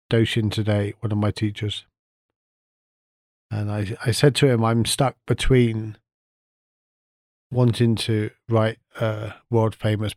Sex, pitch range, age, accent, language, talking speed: male, 105-120 Hz, 40-59, British, English, 125 wpm